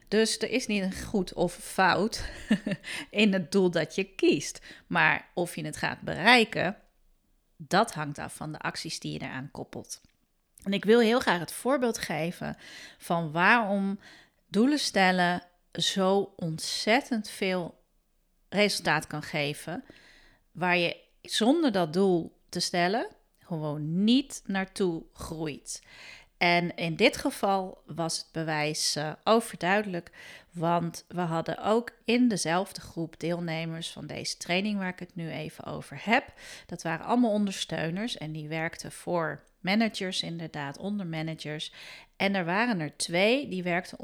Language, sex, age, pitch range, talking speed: Dutch, female, 40-59, 160-205 Hz, 145 wpm